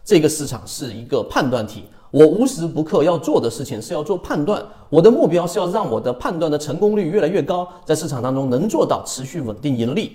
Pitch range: 120-175 Hz